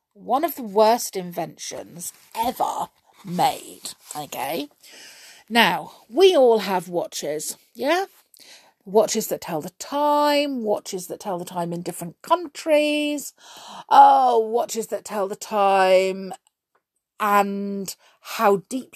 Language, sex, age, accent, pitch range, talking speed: English, female, 40-59, British, 180-290 Hz, 115 wpm